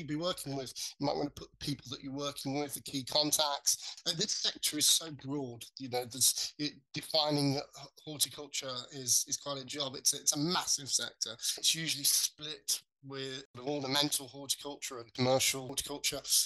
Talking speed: 180 wpm